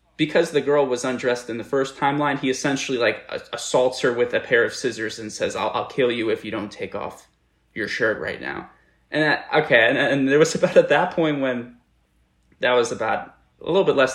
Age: 20-39